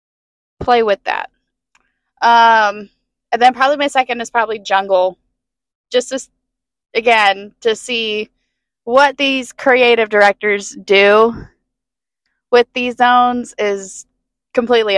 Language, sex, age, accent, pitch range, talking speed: English, female, 20-39, American, 210-270 Hz, 110 wpm